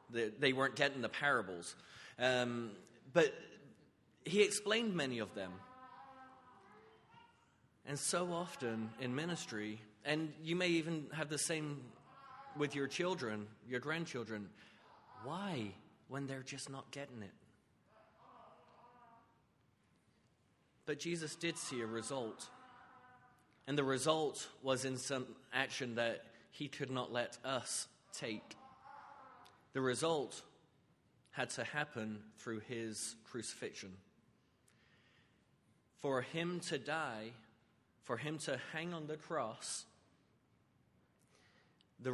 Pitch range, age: 115-155 Hz, 30-49